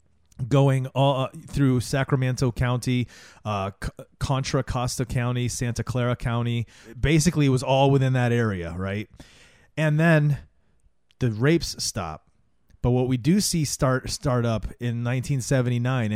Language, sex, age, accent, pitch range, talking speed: English, male, 30-49, American, 110-130 Hz, 130 wpm